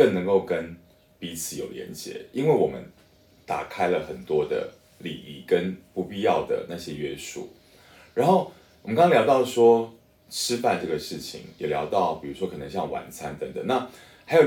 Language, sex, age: Chinese, male, 20-39